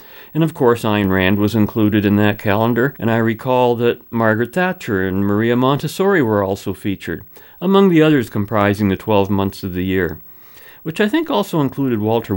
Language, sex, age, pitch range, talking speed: English, male, 50-69, 100-145 Hz, 185 wpm